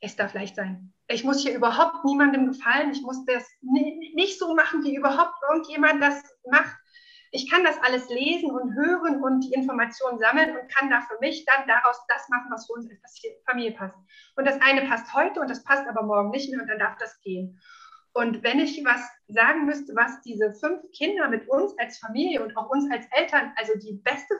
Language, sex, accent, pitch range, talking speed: German, female, German, 240-305 Hz, 210 wpm